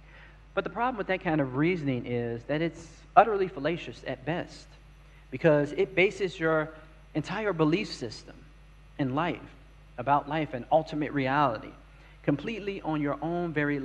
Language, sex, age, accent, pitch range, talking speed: English, male, 40-59, American, 140-165 Hz, 145 wpm